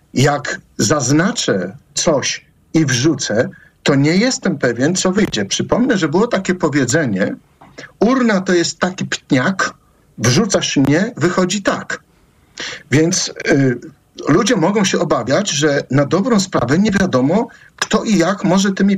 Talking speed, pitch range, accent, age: 130 wpm, 145-225 Hz, native, 50-69